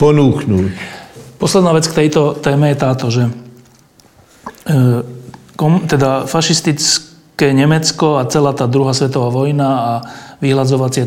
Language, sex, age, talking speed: Slovak, male, 40-59, 115 wpm